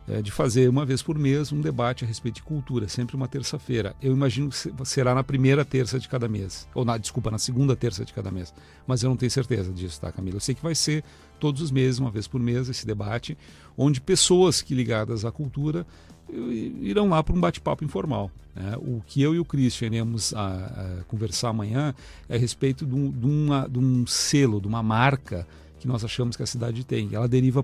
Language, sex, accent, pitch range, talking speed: Portuguese, male, Brazilian, 110-135 Hz, 225 wpm